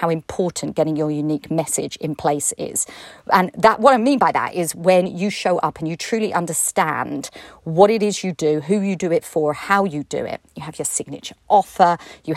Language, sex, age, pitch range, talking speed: English, female, 40-59, 160-205 Hz, 220 wpm